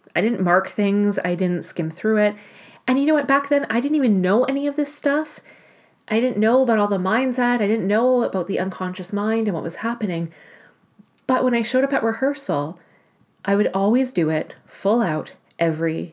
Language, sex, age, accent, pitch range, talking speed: English, female, 30-49, American, 170-235 Hz, 210 wpm